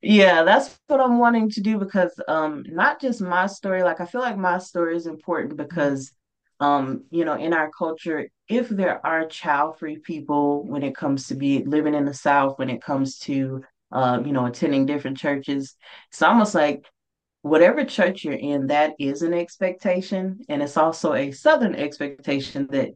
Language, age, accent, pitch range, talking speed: English, 20-39, American, 130-170 Hz, 185 wpm